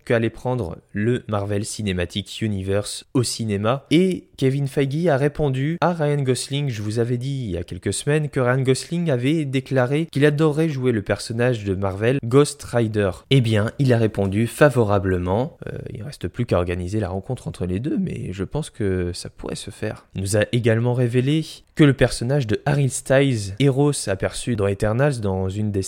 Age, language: 20-39, French